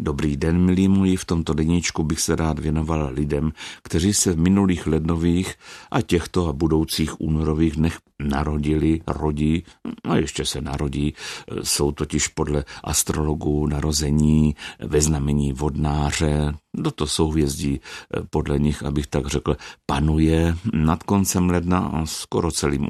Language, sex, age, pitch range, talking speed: Czech, male, 60-79, 75-95 Hz, 135 wpm